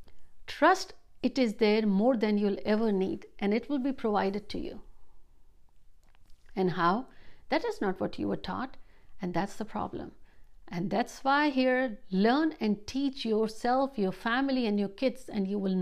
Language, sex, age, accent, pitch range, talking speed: Hindi, female, 60-79, native, 195-260 Hz, 170 wpm